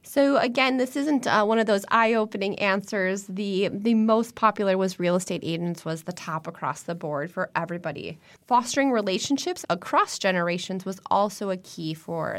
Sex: female